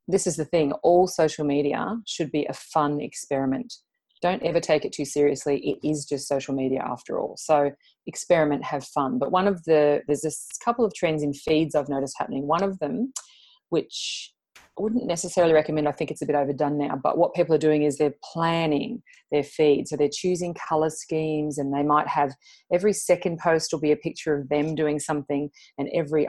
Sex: female